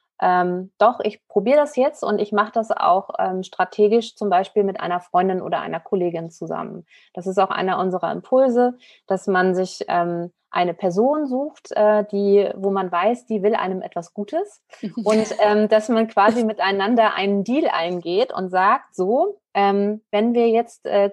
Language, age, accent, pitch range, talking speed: German, 30-49, German, 190-225 Hz, 175 wpm